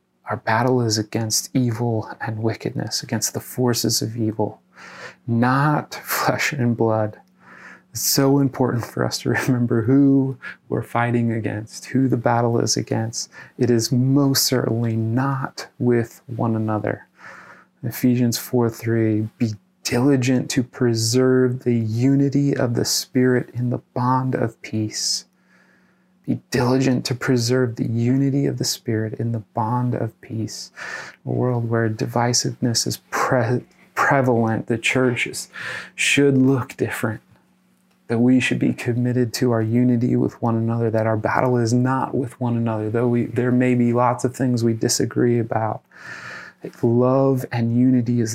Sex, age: male, 30-49